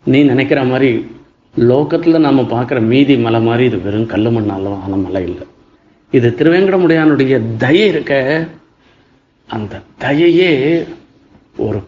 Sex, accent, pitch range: male, native, 115-165 Hz